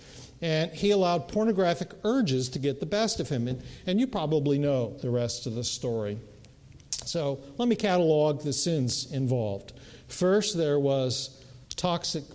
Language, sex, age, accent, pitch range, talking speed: English, male, 50-69, American, 130-170 Hz, 155 wpm